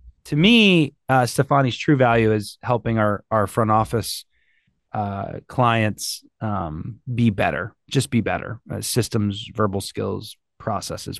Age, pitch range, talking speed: 30-49, 115-160 Hz, 135 wpm